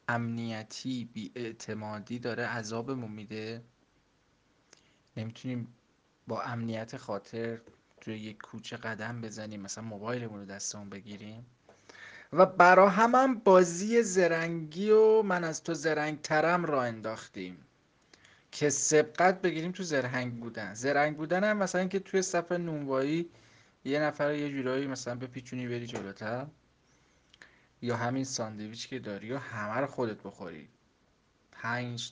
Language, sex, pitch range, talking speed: Persian, male, 115-160 Hz, 115 wpm